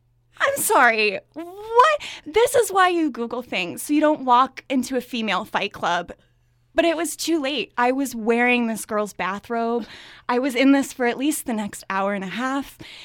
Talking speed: 195 wpm